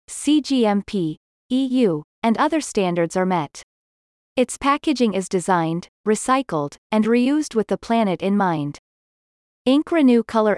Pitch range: 180-245 Hz